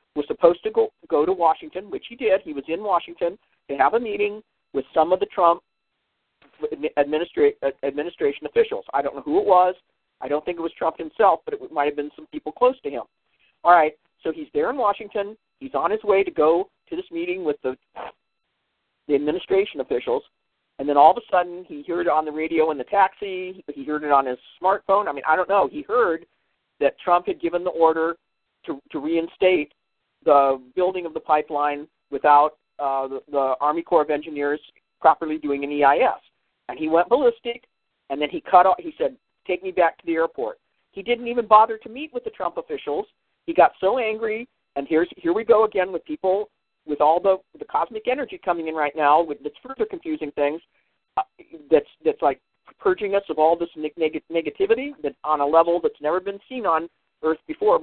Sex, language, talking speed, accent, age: male, English, 210 wpm, American, 50-69